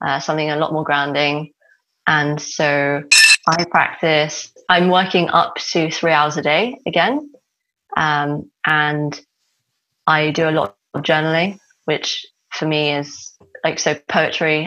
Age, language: 20-39, English